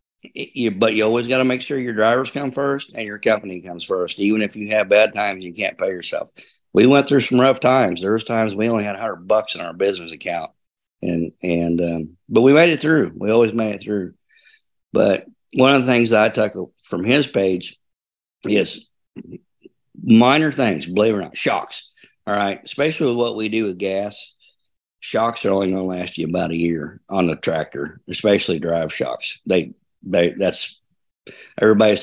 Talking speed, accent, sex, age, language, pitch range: 200 wpm, American, male, 50-69, English, 90-120 Hz